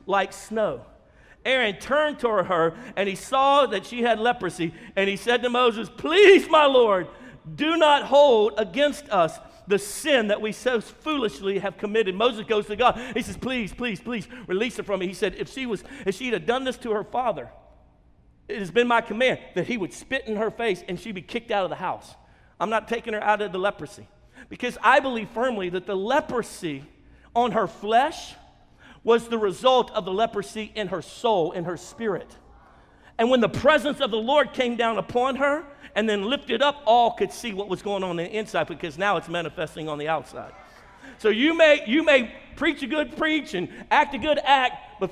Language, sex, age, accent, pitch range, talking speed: English, male, 50-69, American, 200-270 Hz, 210 wpm